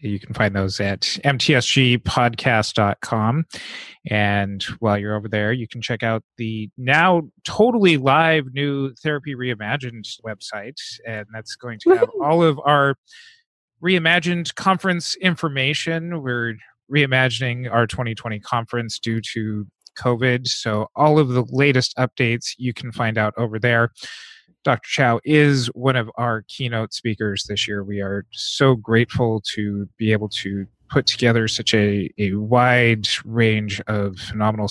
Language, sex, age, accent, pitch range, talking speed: English, male, 30-49, American, 105-135 Hz, 140 wpm